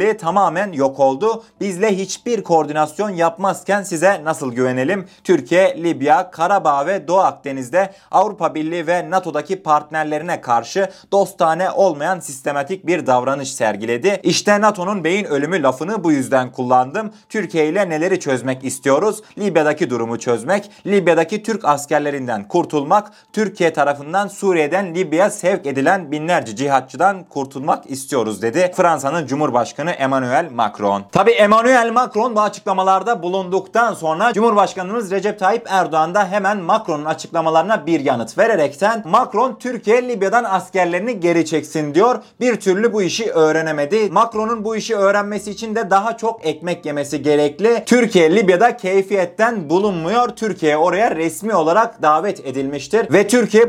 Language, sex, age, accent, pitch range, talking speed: Turkish, male, 30-49, native, 150-210 Hz, 130 wpm